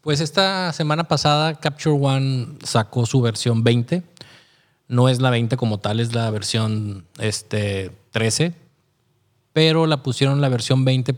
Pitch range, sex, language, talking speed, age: 115-140 Hz, male, Spanish, 145 wpm, 20-39